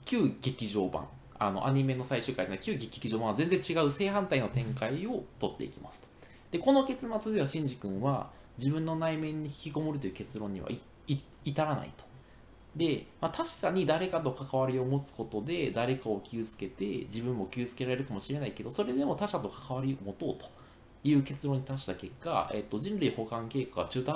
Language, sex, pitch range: Japanese, male, 110-155 Hz